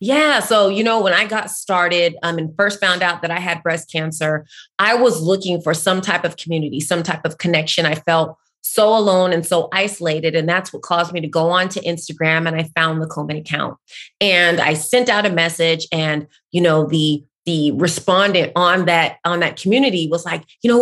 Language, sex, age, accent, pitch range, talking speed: English, female, 30-49, American, 170-205 Hz, 215 wpm